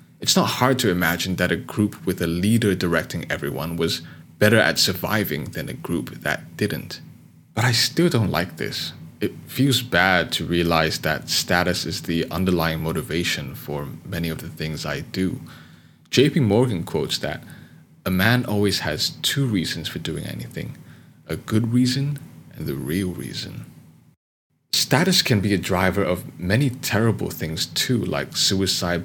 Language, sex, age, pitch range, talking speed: English, male, 30-49, 85-125 Hz, 160 wpm